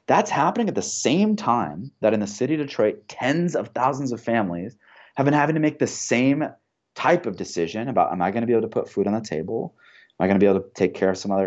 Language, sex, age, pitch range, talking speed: English, male, 30-49, 90-120 Hz, 270 wpm